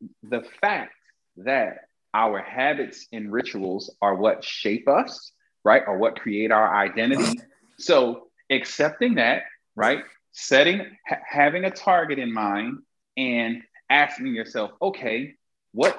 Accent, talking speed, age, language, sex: American, 120 wpm, 30-49, English, male